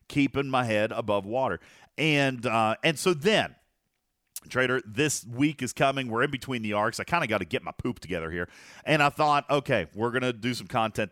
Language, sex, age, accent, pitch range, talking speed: English, male, 40-59, American, 110-165 Hz, 215 wpm